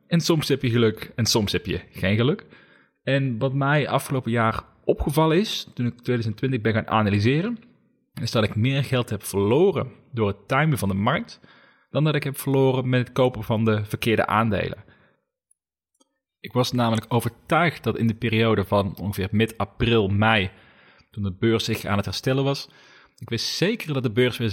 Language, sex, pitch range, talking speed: Dutch, male, 110-145 Hz, 185 wpm